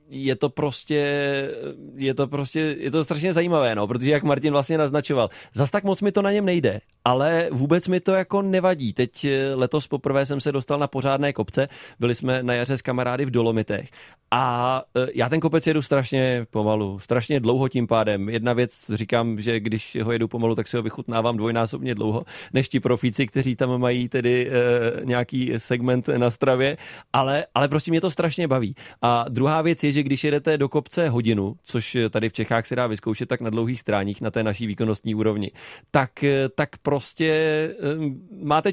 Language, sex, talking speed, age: Czech, male, 190 wpm, 30-49